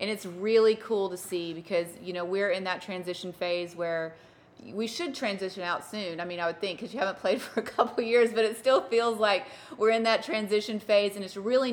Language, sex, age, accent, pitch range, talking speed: English, female, 30-49, American, 170-190 Hz, 240 wpm